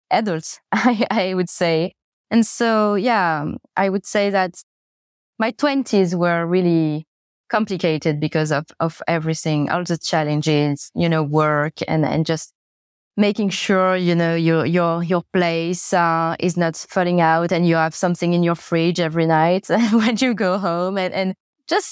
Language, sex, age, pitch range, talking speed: English, female, 20-39, 160-195 Hz, 160 wpm